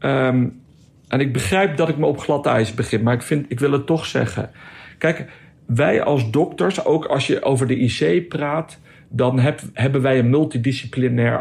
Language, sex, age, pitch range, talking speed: Dutch, male, 60-79, 120-155 Hz, 190 wpm